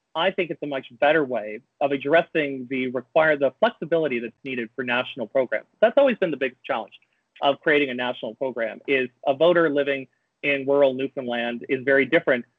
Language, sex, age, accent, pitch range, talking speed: English, male, 30-49, American, 130-150 Hz, 185 wpm